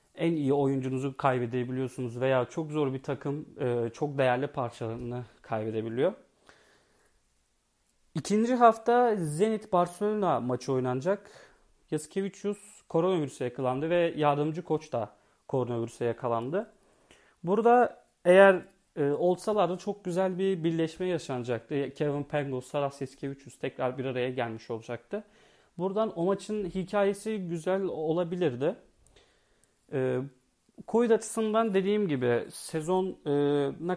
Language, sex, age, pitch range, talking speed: Turkish, male, 30-49, 130-195 Hz, 100 wpm